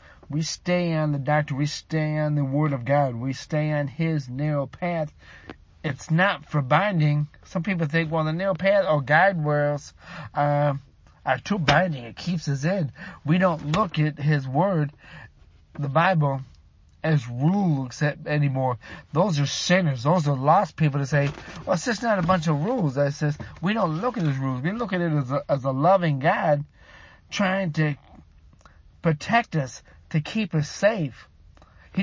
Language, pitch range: English, 145-180 Hz